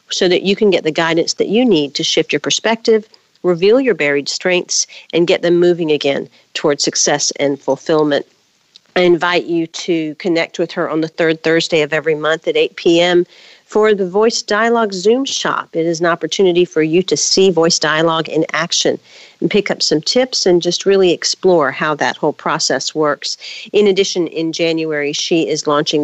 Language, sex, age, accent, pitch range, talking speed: English, female, 50-69, American, 170-225 Hz, 190 wpm